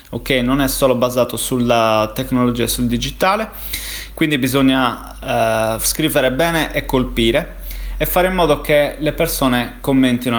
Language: Italian